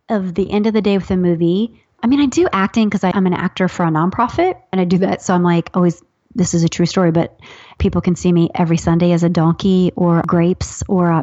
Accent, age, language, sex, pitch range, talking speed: American, 30-49, English, female, 175-215 Hz, 255 wpm